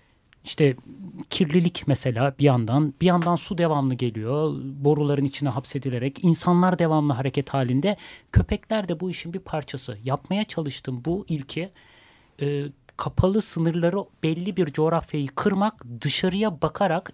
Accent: native